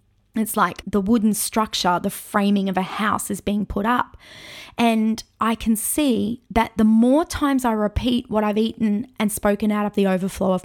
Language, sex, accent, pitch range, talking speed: English, female, Australian, 200-240 Hz, 190 wpm